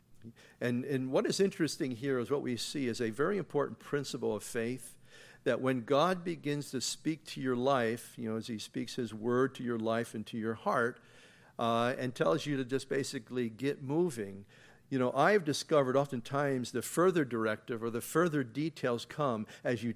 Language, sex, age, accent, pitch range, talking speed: English, male, 50-69, American, 120-150 Hz, 195 wpm